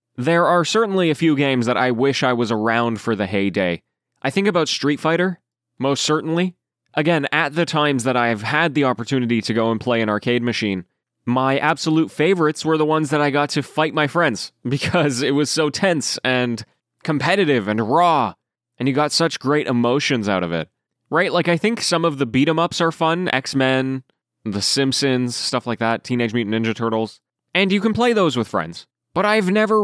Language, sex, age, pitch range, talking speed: English, male, 20-39, 115-160 Hz, 200 wpm